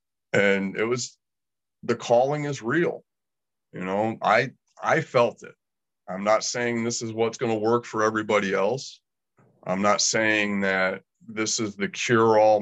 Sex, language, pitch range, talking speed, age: male, English, 100-120 Hz, 155 wpm, 30-49